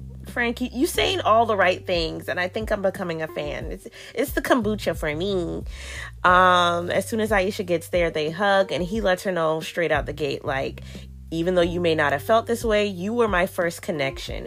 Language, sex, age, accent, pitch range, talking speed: English, female, 20-39, American, 150-210 Hz, 220 wpm